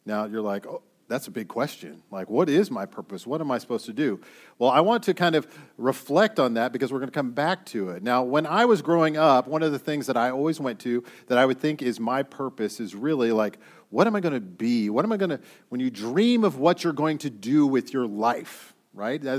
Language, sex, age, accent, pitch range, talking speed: English, male, 40-59, American, 125-180 Hz, 265 wpm